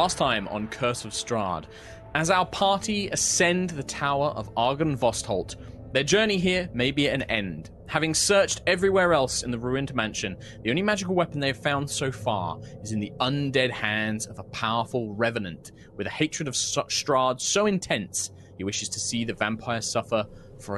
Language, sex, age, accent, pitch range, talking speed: English, male, 20-39, British, 105-140 Hz, 185 wpm